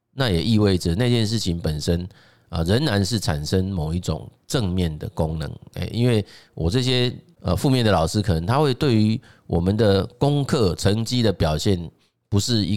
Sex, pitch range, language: male, 85-115 Hz, Chinese